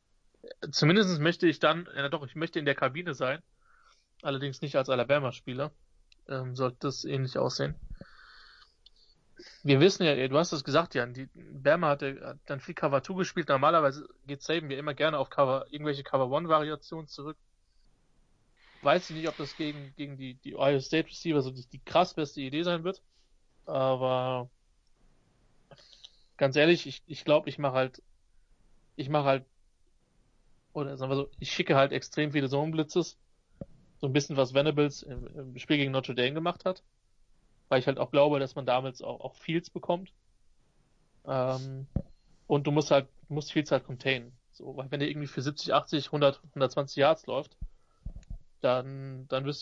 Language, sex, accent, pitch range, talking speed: English, male, German, 135-155 Hz, 175 wpm